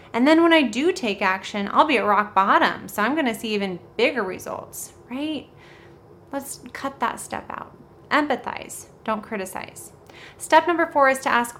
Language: English